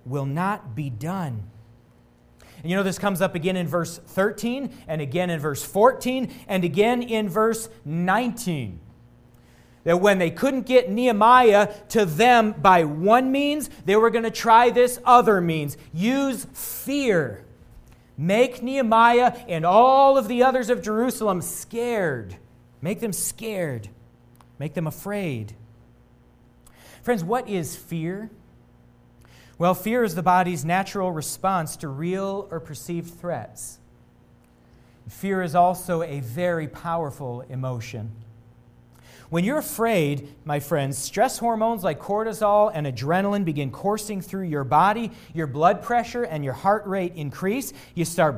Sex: male